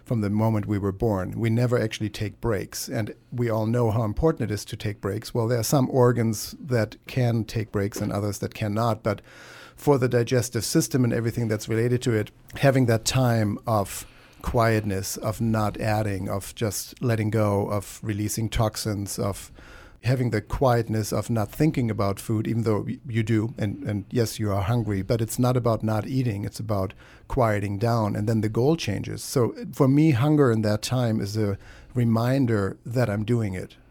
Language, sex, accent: English, male, German